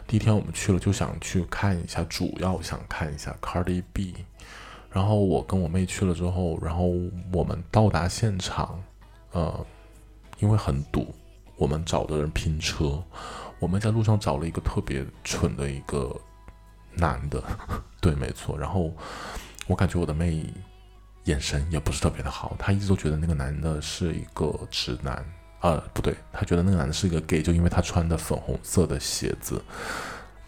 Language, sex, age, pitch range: Chinese, male, 20-39, 80-95 Hz